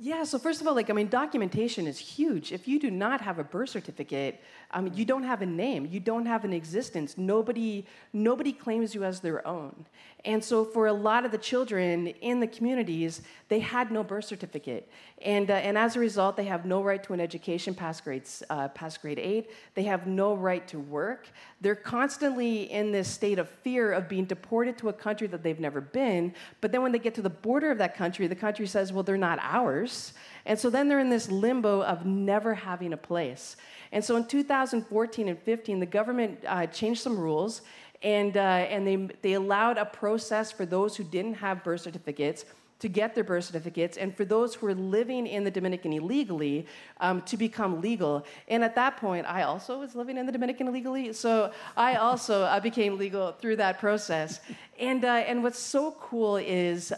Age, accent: 40-59, American